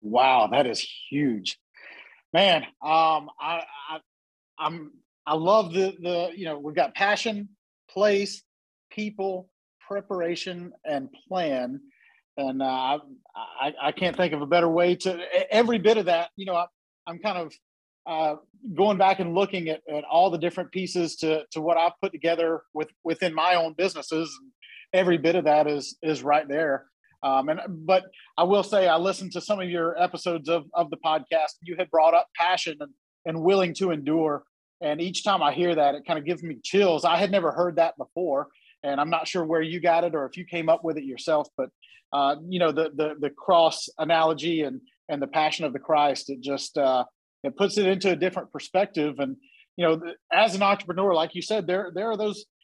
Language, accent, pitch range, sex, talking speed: English, American, 155-190 Hz, male, 200 wpm